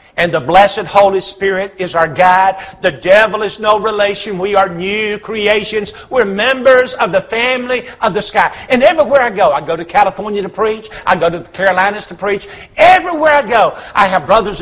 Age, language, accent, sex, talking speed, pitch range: 50-69, English, American, male, 195 wpm, 175-230 Hz